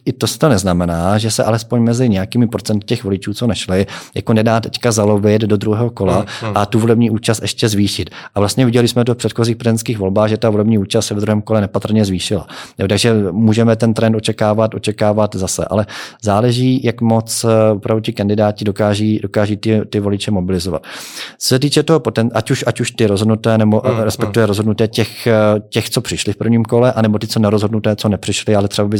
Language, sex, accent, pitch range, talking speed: Czech, male, native, 105-115 Hz, 195 wpm